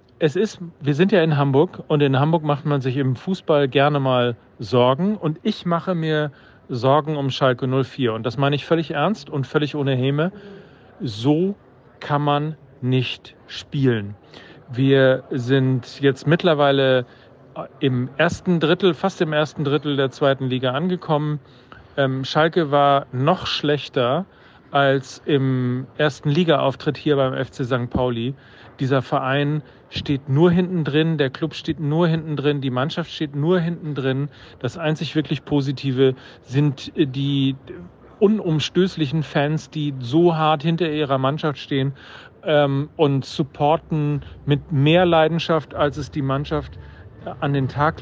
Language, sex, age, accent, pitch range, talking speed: German, male, 40-59, German, 130-160 Hz, 140 wpm